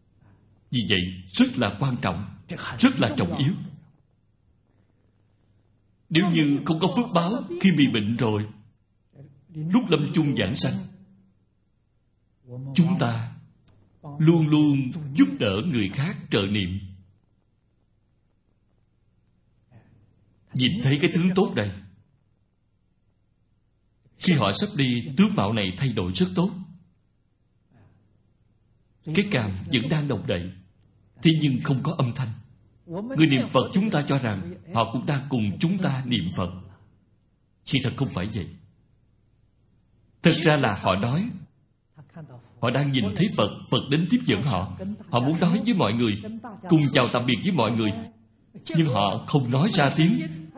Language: Vietnamese